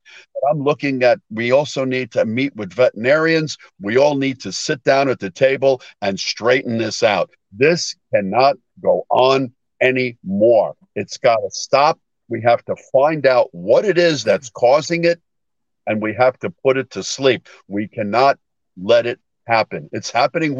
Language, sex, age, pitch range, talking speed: English, male, 50-69, 115-150 Hz, 170 wpm